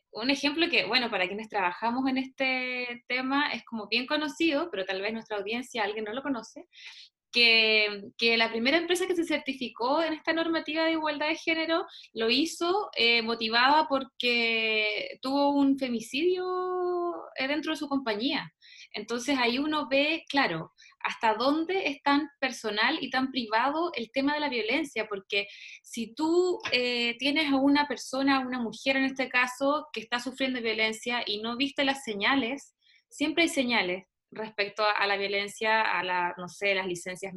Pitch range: 220-300 Hz